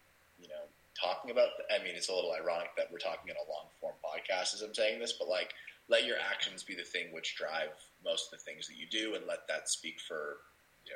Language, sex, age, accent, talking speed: English, male, 30-49, American, 235 wpm